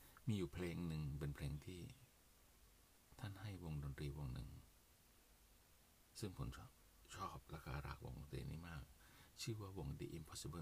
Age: 60-79